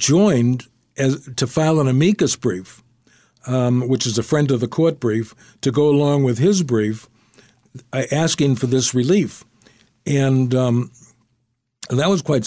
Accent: American